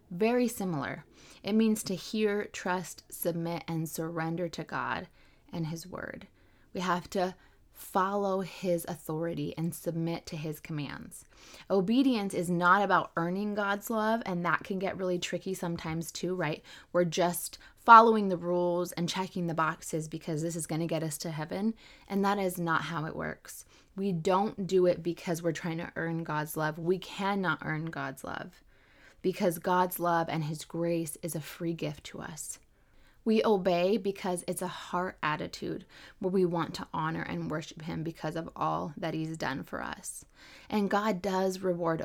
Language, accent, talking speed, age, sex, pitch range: English, American, 175 wpm, 20-39, female, 165-195 Hz